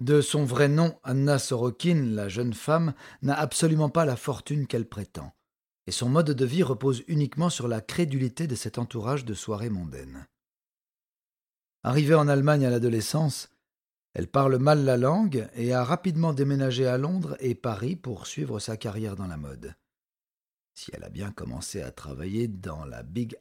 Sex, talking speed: male, 170 wpm